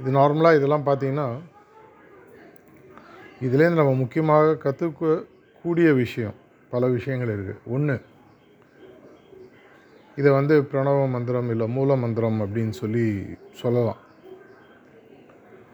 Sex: male